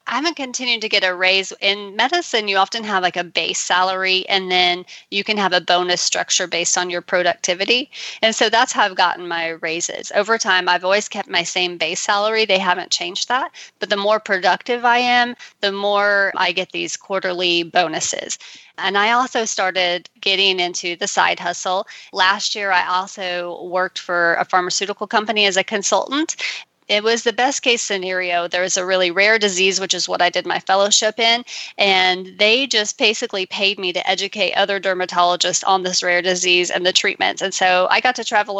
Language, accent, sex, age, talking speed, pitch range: English, American, female, 30-49, 195 wpm, 180-205 Hz